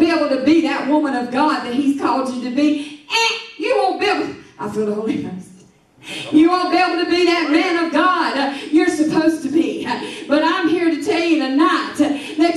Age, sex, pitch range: 40-59, female, 235-330 Hz